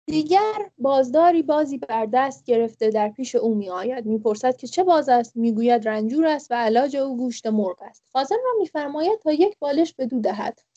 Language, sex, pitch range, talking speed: English, female, 235-320 Hz, 185 wpm